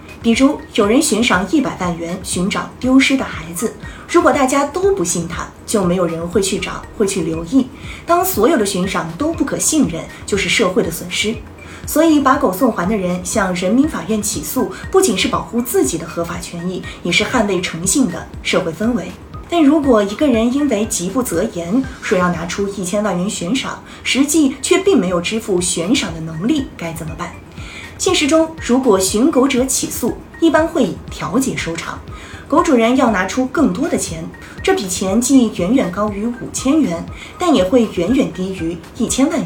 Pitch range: 185-275 Hz